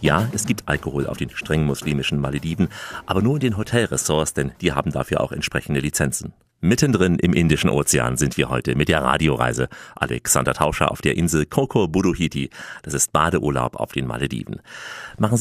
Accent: German